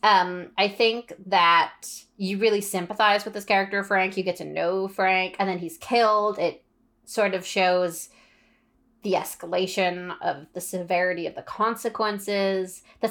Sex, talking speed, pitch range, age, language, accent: female, 150 wpm, 180-220 Hz, 20-39, English, American